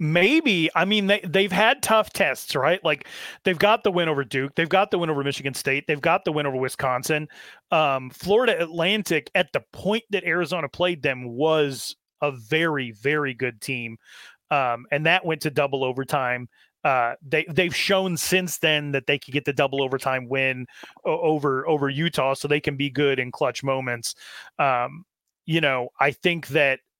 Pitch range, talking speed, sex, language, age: 140-170 Hz, 185 wpm, male, English, 30-49